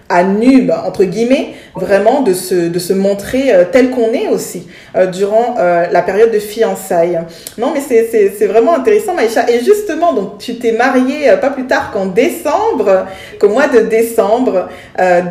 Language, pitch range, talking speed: French, 195-245 Hz, 185 wpm